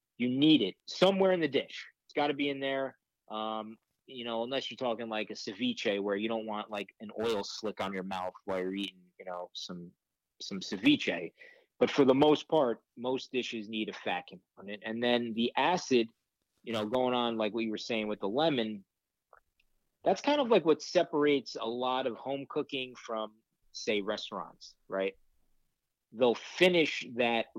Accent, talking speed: American, 185 wpm